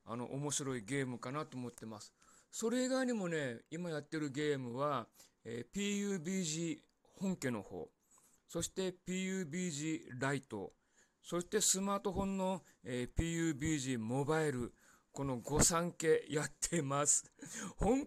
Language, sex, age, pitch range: Japanese, male, 40-59, 125-185 Hz